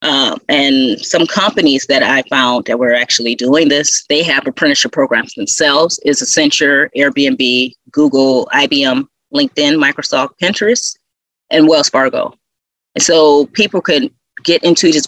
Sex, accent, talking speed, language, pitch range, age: female, American, 140 wpm, English, 140-210 Hz, 30-49